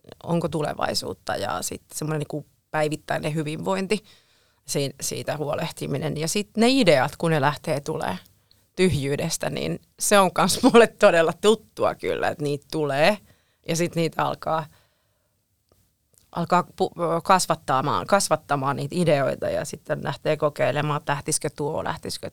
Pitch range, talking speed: 145-170 Hz, 120 wpm